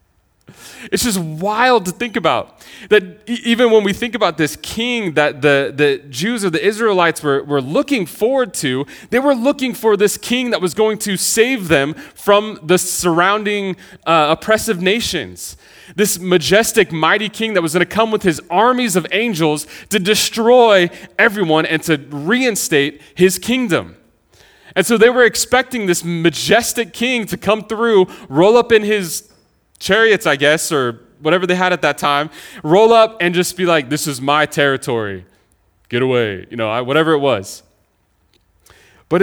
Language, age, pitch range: English, 30-49, 145-215 Hz